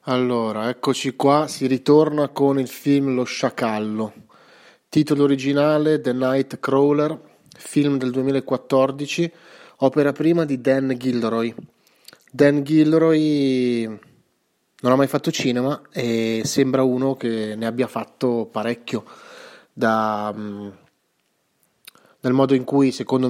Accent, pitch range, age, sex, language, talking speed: native, 120-135 Hz, 30-49, male, Italian, 115 wpm